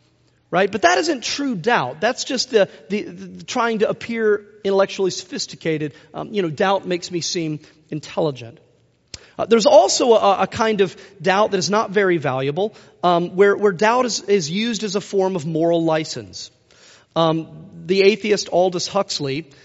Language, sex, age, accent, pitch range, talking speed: English, male, 40-59, American, 150-200 Hz, 170 wpm